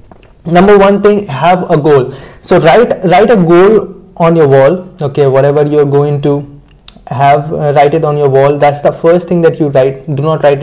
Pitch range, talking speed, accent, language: 150-185 Hz, 210 wpm, Indian, English